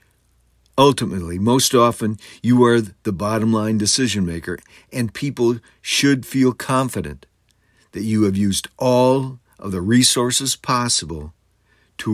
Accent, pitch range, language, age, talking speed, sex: American, 100-125 Hz, English, 60-79, 115 wpm, male